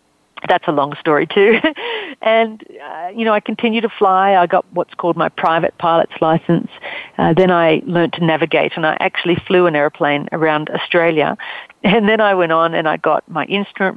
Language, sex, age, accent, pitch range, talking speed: English, female, 40-59, Australian, 170-200 Hz, 195 wpm